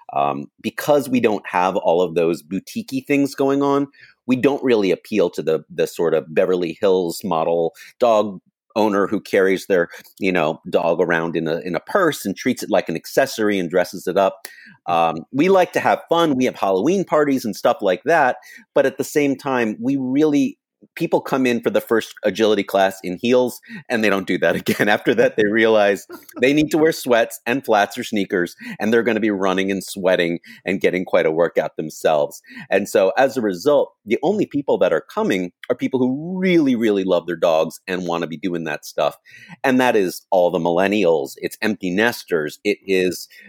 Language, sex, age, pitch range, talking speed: English, male, 30-49, 95-140 Hz, 205 wpm